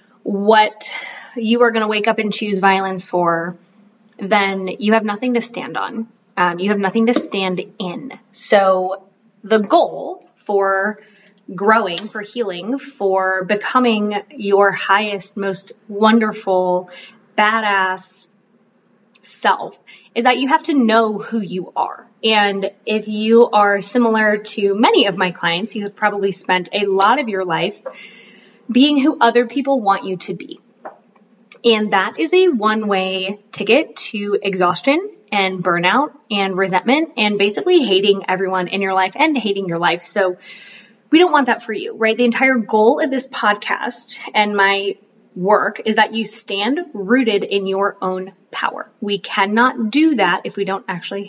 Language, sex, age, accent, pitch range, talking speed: English, female, 20-39, American, 195-225 Hz, 155 wpm